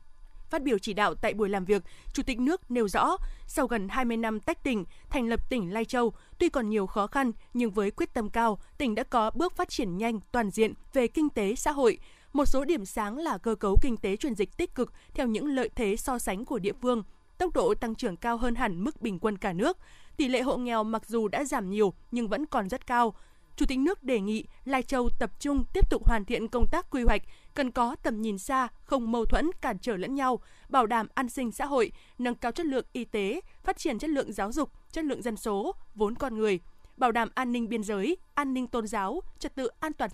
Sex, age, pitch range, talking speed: female, 20-39, 220-280 Hz, 245 wpm